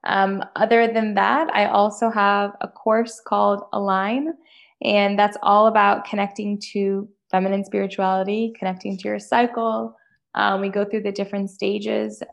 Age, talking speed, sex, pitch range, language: 10-29, 145 wpm, female, 190-220 Hz, English